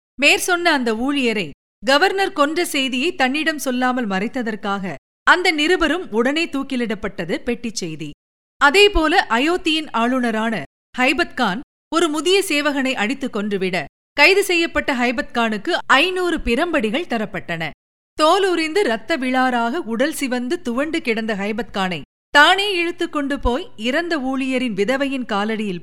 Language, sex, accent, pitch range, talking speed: Tamil, female, native, 225-320 Hz, 105 wpm